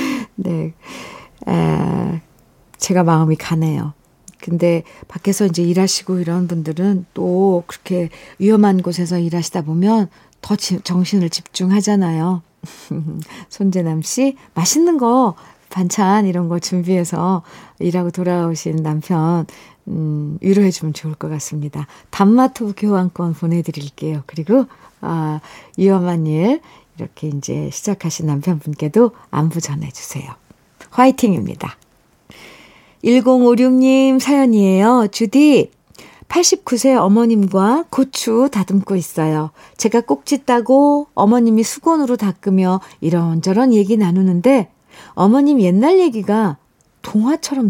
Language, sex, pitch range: Korean, female, 165-235 Hz